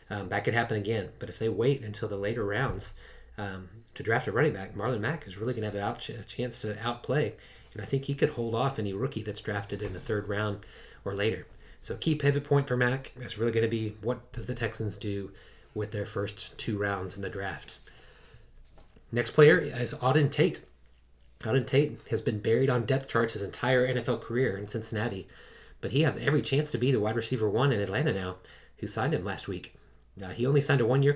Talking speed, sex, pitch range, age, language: 220 wpm, male, 105-125 Hz, 30-49, English